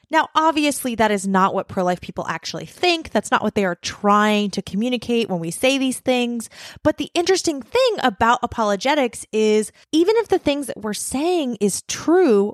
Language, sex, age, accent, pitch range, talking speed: English, female, 20-39, American, 200-260 Hz, 185 wpm